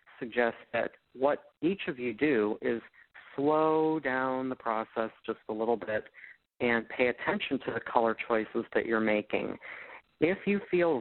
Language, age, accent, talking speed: English, 50-69, American, 160 wpm